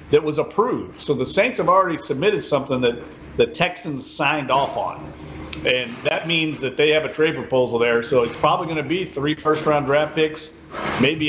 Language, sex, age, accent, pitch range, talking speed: English, male, 40-59, American, 120-155 Hz, 200 wpm